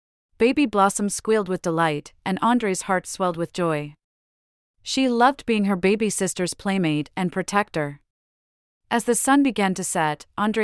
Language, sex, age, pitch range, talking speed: English, female, 30-49, 165-205 Hz, 150 wpm